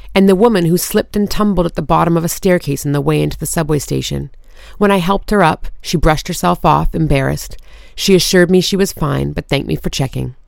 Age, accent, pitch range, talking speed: 30-49, American, 155-190 Hz, 235 wpm